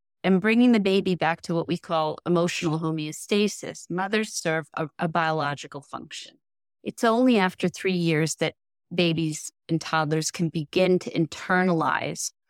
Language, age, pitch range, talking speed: English, 30-49, 160-195 Hz, 145 wpm